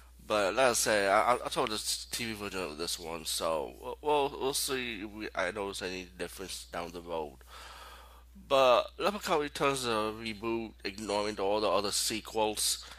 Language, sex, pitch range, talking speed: English, male, 100-135 Hz, 165 wpm